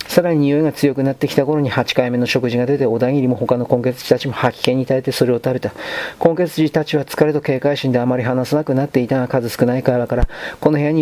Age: 40-59